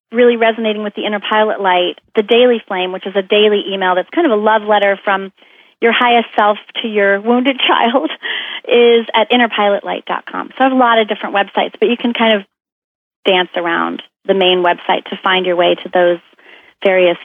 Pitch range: 190-235 Hz